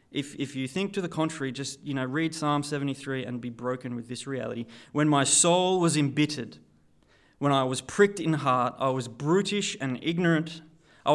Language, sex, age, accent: English, male, 20-39, Australian